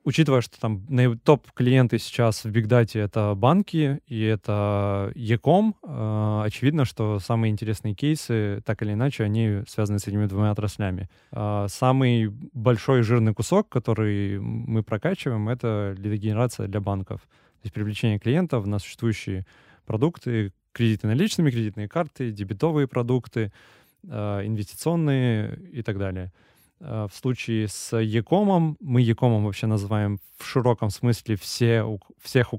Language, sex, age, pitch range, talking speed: Russian, male, 20-39, 105-125 Hz, 130 wpm